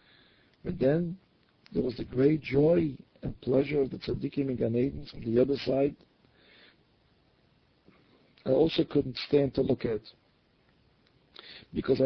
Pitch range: 125-150 Hz